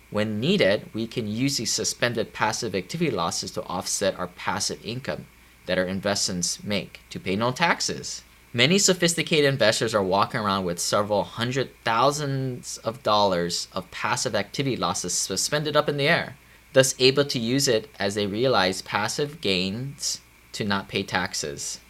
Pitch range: 90-130 Hz